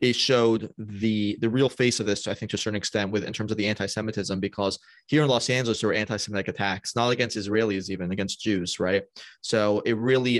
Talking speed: 225 wpm